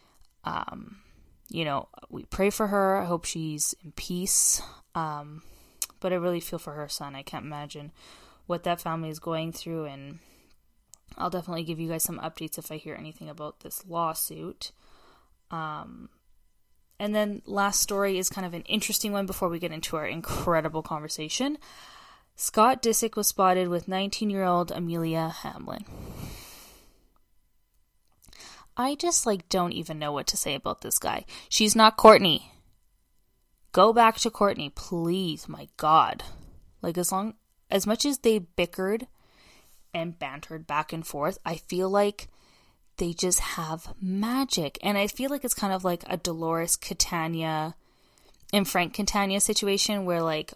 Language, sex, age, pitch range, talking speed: English, female, 10-29, 160-200 Hz, 155 wpm